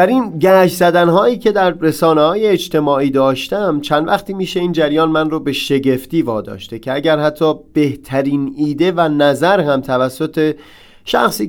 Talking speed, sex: 150 wpm, male